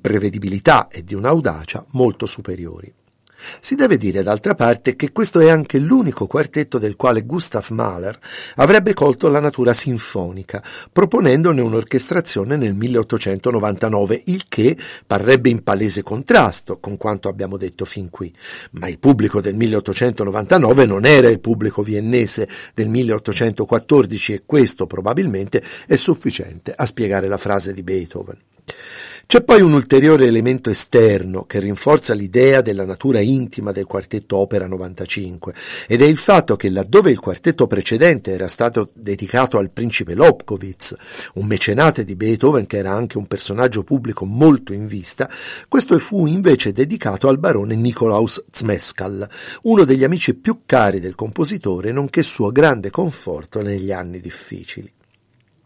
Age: 50-69